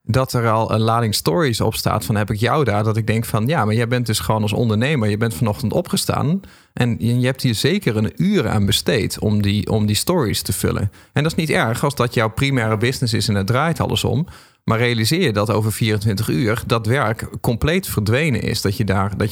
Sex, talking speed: male, 240 wpm